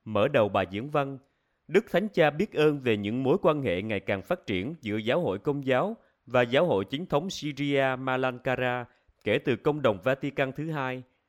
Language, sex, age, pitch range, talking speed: Vietnamese, male, 30-49, 115-160 Hz, 195 wpm